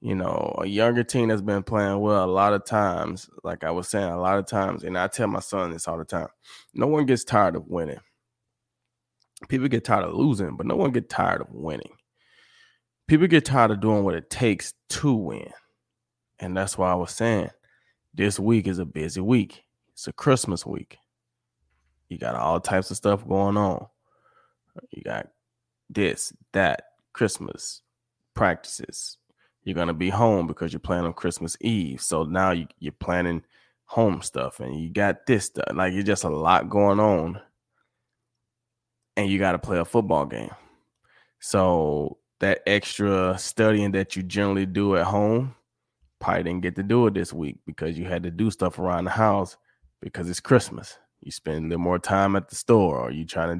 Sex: male